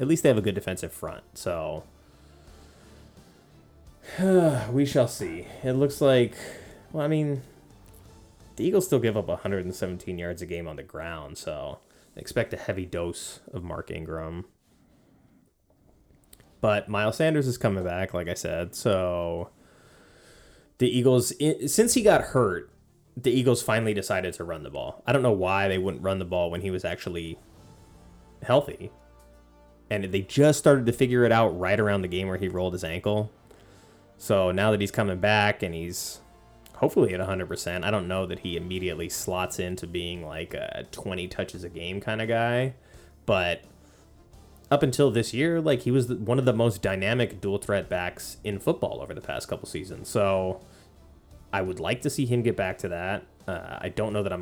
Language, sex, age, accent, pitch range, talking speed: English, male, 20-39, American, 90-120 Hz, 180 wpm